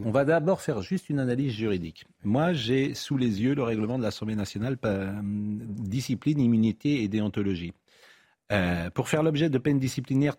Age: 40-59